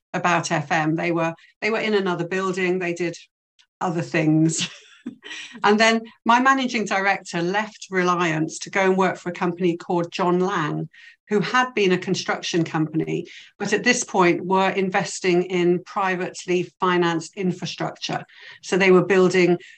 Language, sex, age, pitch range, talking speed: Arabic, female, 50-69, 170-205 Hz, 150 wpm